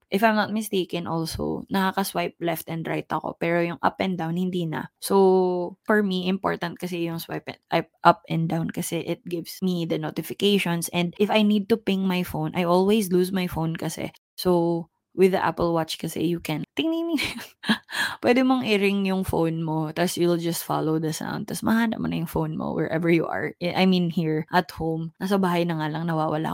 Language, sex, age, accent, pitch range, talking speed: Filipino, female, 20-39, native, 165-195 Hz, 205 wpm